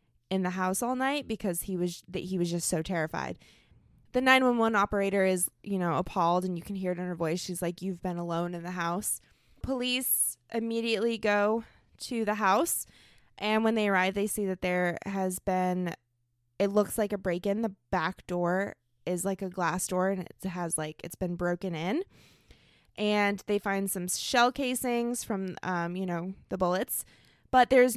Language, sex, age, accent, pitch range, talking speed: English, female, 20-39, American, 175-205 Hz, 190 wpm